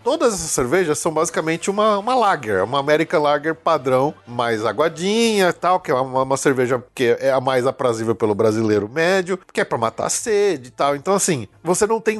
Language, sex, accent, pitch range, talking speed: Portuguese, male, Brazilian, 130-200 Hz, 205 wpm